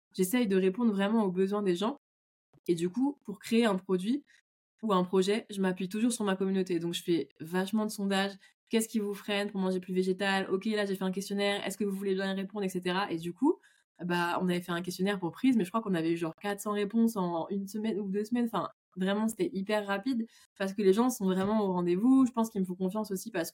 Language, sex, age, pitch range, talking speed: French, female, 20-39, 175-210 Hz, 250 wpm